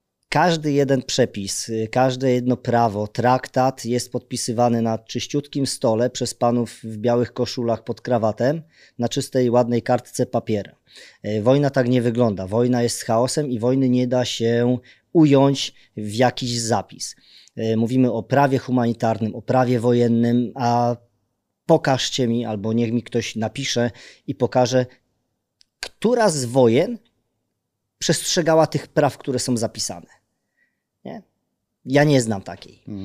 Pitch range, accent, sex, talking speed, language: 115-130 Hz, native, male, 125 wpm, Polish